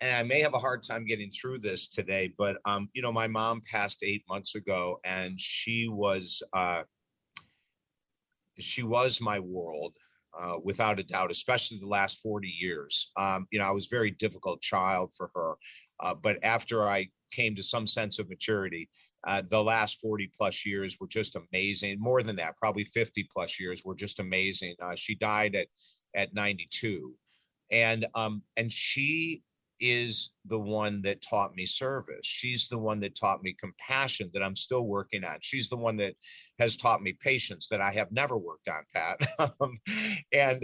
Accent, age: American, 40-59